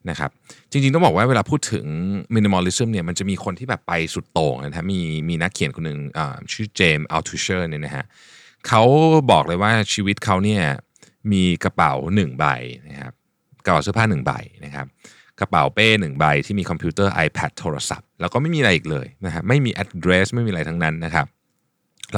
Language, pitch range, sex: Thai, 85-115 Hz, male